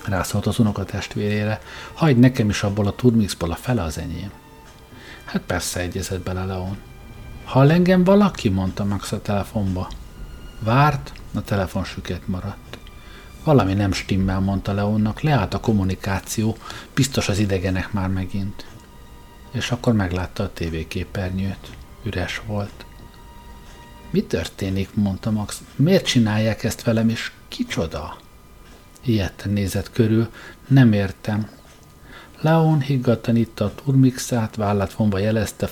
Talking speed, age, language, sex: 125 wpm, 50-69, Hungarian, male